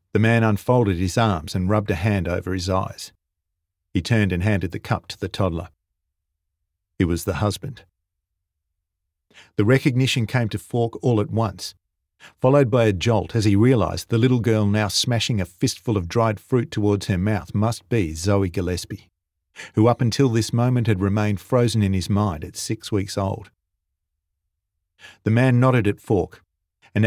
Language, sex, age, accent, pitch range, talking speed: English, male, 50-69, Australian, 90-110 Hz, 175 wpm